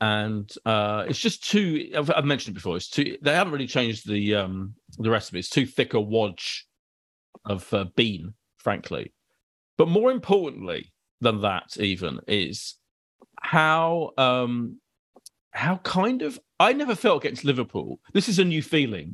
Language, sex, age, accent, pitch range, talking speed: English, male, 40-59, British, 110-170 Hz, 155 wpm